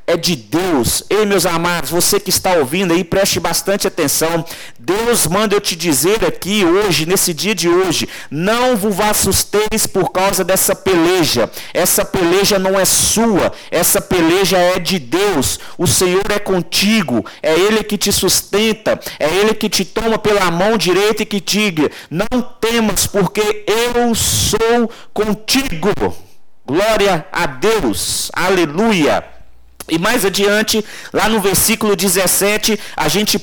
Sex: male